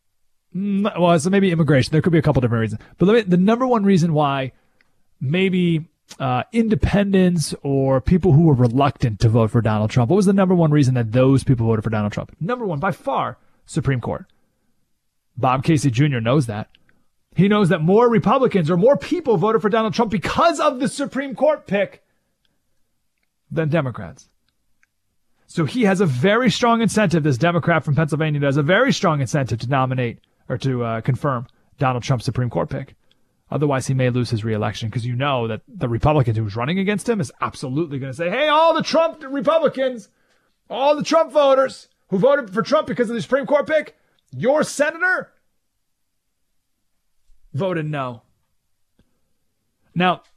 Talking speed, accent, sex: 175 wpm, American, male